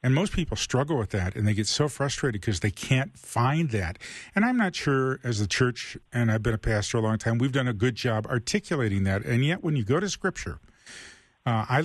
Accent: American